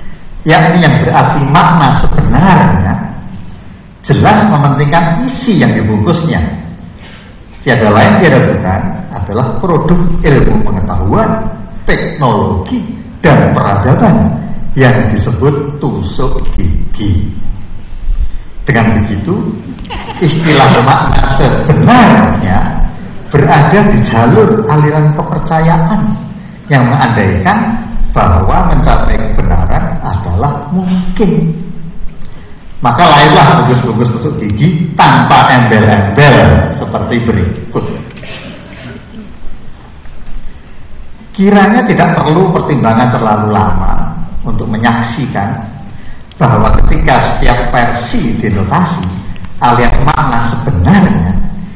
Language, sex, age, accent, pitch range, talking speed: Indonesian, male, 50-69, native, 110-170 Hz, 80 wpm